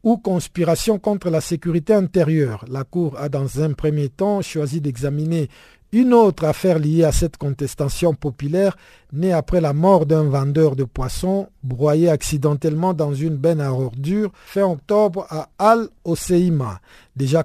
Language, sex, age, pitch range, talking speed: French, male, 50-69, 145-180 Hz, 150 wpm